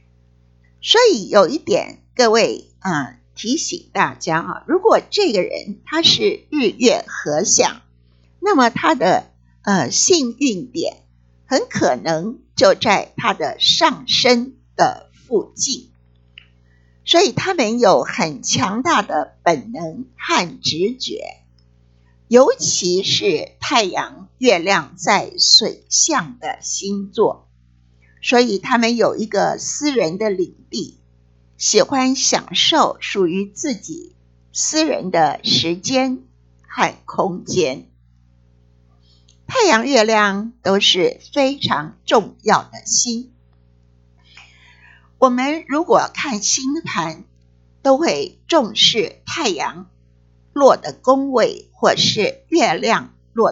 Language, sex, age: Chinese, female, 50-69